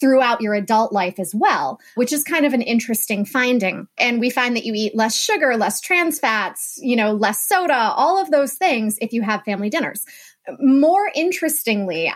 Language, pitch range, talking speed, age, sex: English, 215-275 Hz, 190 wpm, 20-39, female